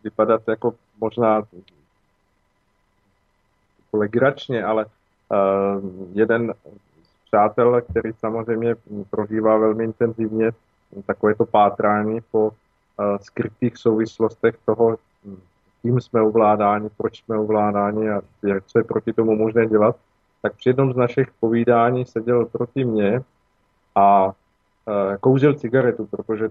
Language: Slovak